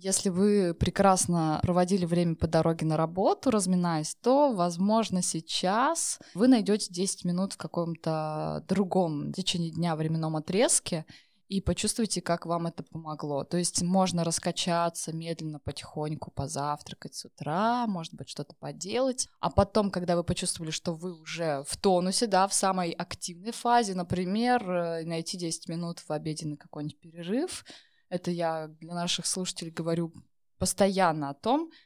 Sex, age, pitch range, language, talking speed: female, 20-39, 165-200 Hz, Russian, 140 wpm